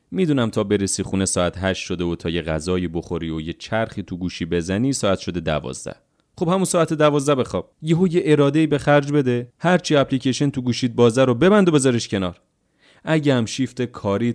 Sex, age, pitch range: male, 30-49, 85-130 Hz